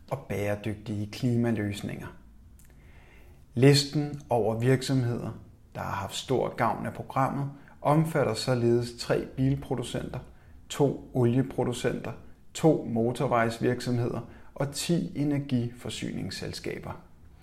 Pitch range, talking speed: 110-130 Hz, 85 wpm